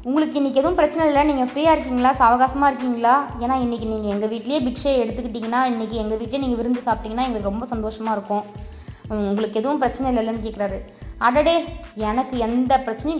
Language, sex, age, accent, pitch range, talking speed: Tamil, female, 20-39, native, 225-275 Hz, 165 wpm